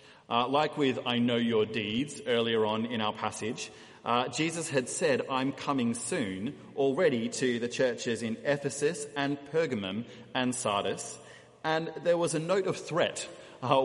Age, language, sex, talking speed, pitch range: 30-49, English, male, 160 wpm, 115-150 Hz